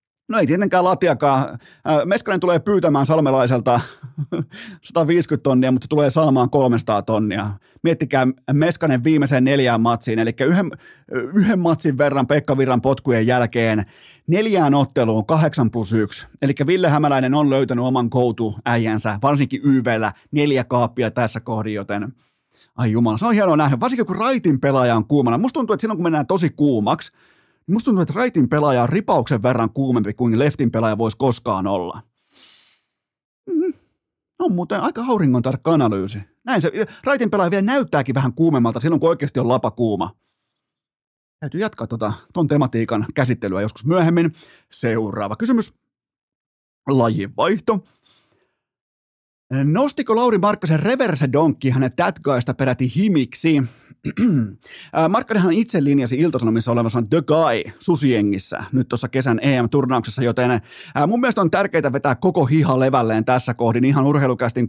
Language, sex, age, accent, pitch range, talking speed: Finnish, male, 30-49, native, 120-165 Hz, 135 wpm